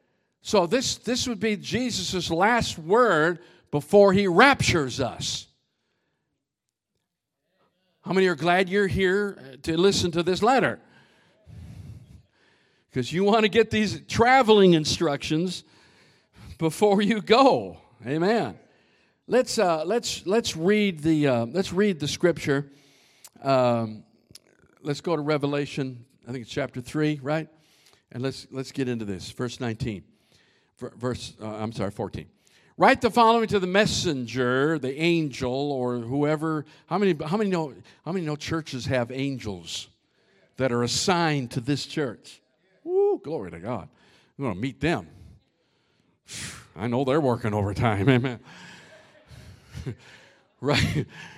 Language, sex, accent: English, male, American